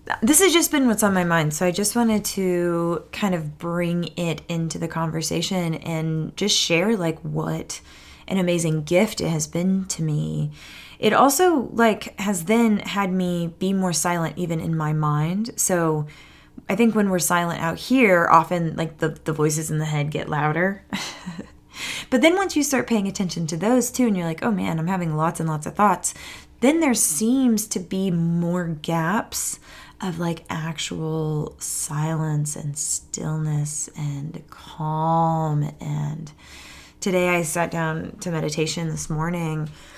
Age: 20-39